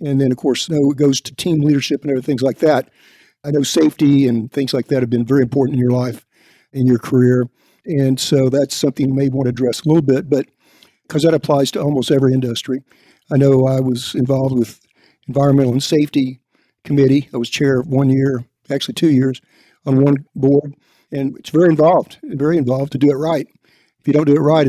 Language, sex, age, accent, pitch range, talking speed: English, male, 50-69, American, 130-150 Hz, 220 wpm